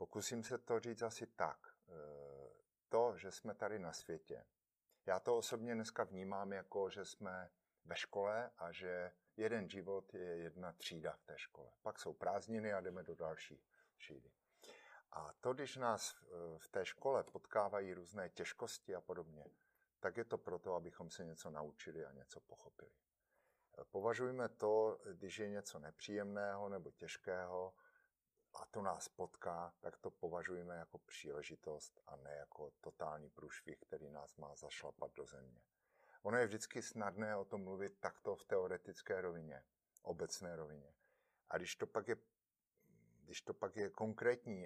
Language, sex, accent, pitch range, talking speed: Czech, male, native, 85-115 Hz, 150 wpm